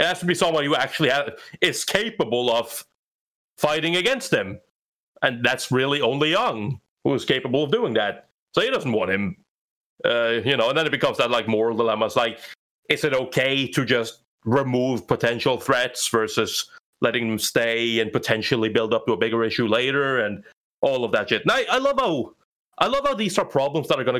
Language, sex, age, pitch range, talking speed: English, male, 30-49, 115-155 Hz, 205 wpm